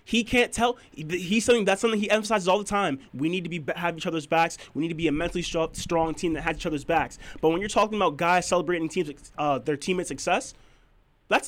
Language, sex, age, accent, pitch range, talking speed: English, male, 20-39, American, 180-240 Hz, 245 wpm